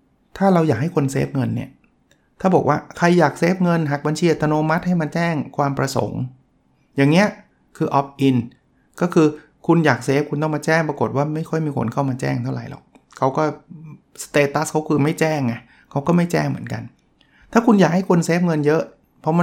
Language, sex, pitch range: Thai, male, 125-160 Hz